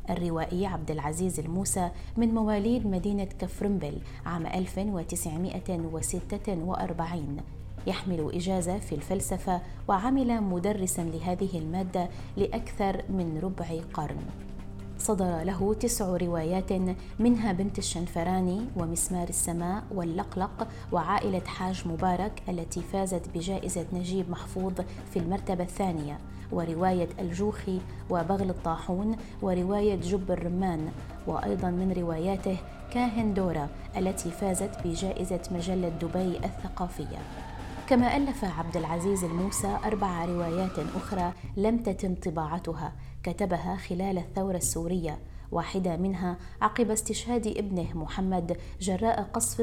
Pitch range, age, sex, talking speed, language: 170-195 Hz, 20-39, female, 100 wpm, Arabic